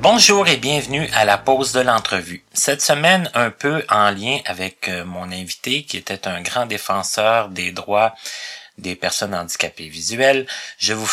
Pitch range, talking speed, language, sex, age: 100-135 Hz, 160 wpm, French, male, 30-49